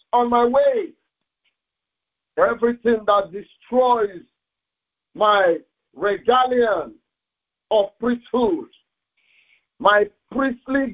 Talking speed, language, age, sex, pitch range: 65 wpm, English, 50-69, male, 225-290 Hz